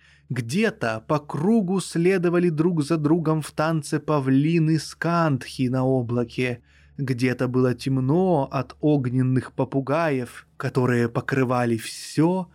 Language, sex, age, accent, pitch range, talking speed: Russian, male, 20-39, native, 125-160 Hz, 105 wpm